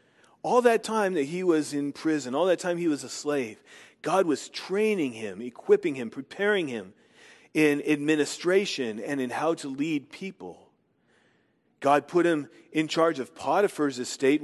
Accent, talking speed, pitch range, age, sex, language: American, 160 wpm, 170-235 Hz, 40-59, male, English